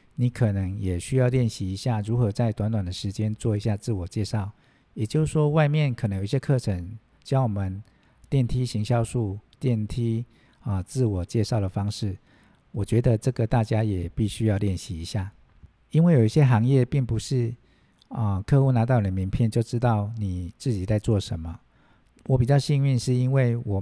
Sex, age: male, 50-69